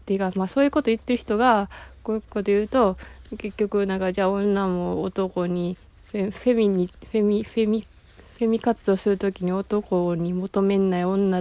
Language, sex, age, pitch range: Japanese, female, 20-39, 180-215 Hz